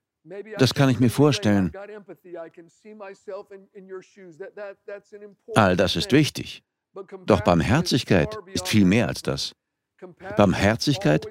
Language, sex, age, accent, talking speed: German, male, 60-79, German, 90 wpm